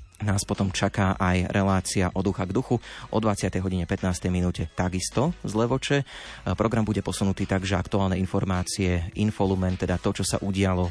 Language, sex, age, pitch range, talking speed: Slovak, male, 30-49, 90-110 Hz, 160 wpm